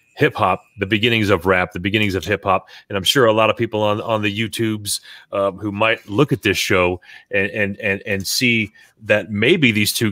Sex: male